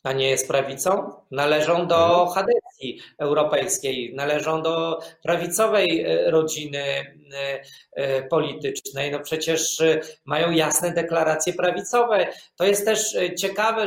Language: Polish